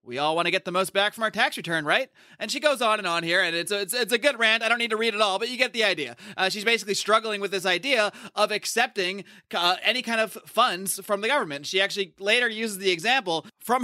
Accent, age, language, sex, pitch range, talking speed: American, 30-49, English, male, 185-250 Hz, 280 wpm